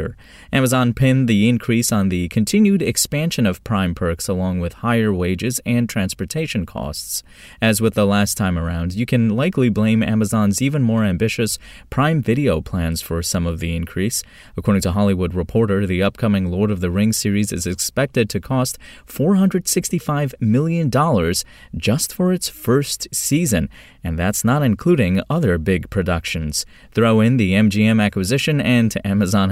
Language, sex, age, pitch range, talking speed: English, male, 30-49, 95-125 Hz, 155 wpm